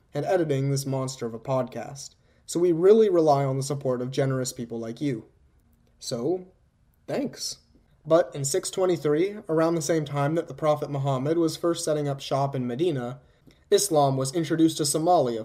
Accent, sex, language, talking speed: American, male, English, 170 wpm